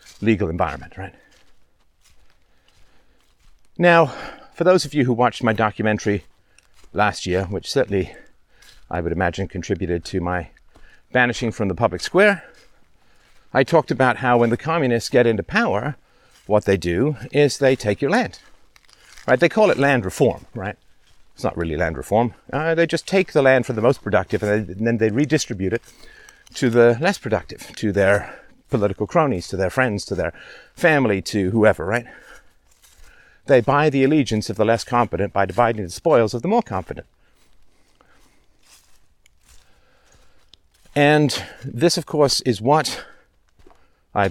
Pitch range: 95-135 Hz